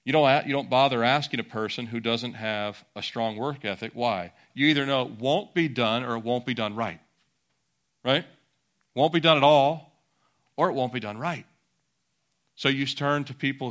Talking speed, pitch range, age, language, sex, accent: 200 wpm, 110-135 Hz, 40-59, English, male, American